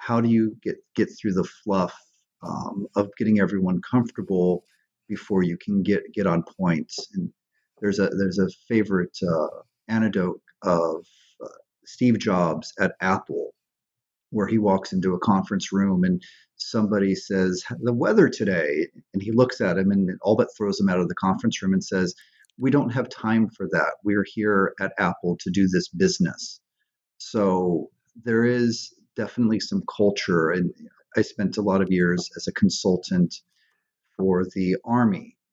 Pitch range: 95-110 Hz